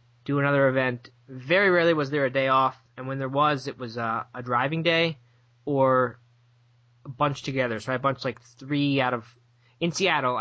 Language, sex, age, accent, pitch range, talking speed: English, male, 20-39, American, 120-145 Hz, 190 wpm